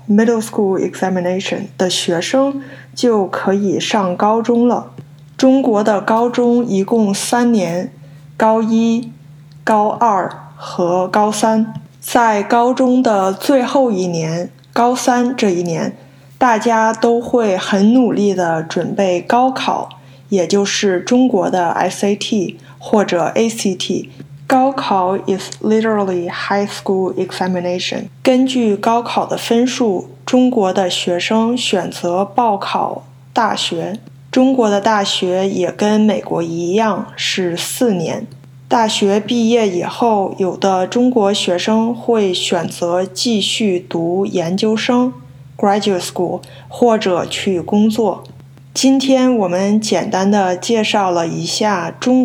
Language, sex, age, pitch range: Chinese, female, 20-39, 180-230 Hz